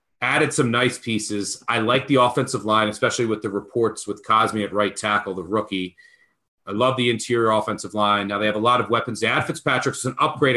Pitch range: 110-140 Hz